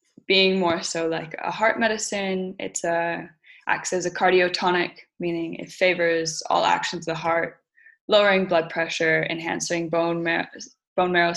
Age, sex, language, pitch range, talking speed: 10-29, female, English, 165-185 Hz, 140 wpm